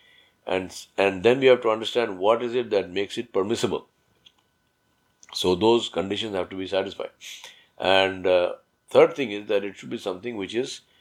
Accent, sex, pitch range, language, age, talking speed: Indian, male, 90-115 Hz, English, 50-69, 180 wpm